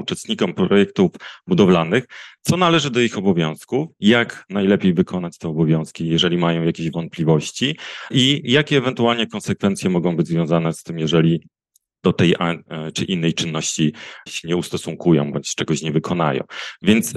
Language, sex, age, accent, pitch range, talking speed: Polish, male, 30-49, native, 80-125 Hz, 140 wpm